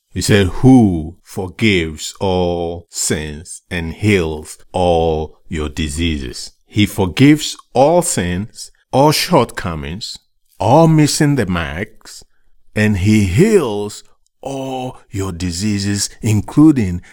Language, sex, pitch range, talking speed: English, male, 85-110 Hz, 100 wpm